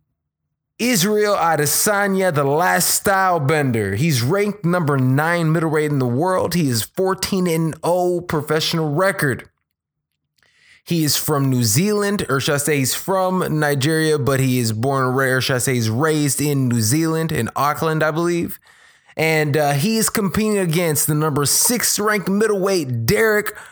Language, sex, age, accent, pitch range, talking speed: English, male, 20-39, American, 140-185 Hz, 155 wpm